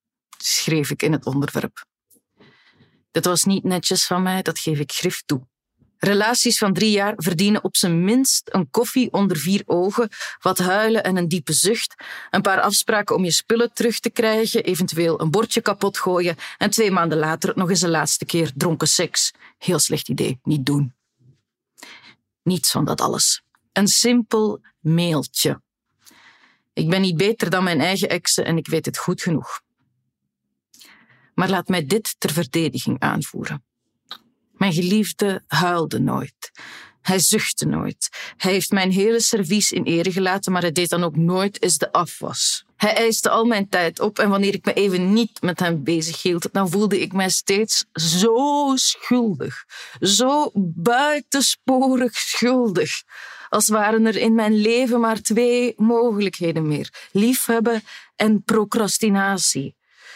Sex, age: female, 40-59